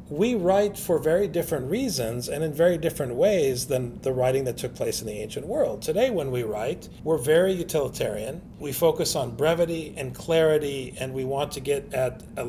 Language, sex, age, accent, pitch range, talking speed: English, male, 40-59, American, 135-185 Hz, 195 wpm